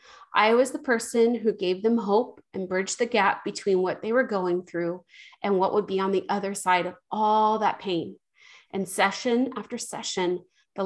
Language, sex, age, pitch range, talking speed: English, female, 30-49, 190-235 Hz, 195 wpm